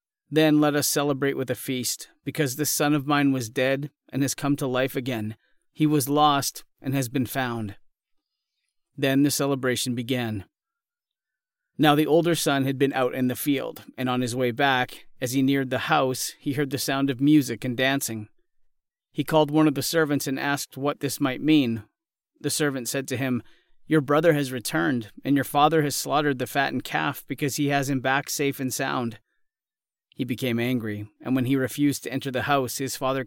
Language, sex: English, male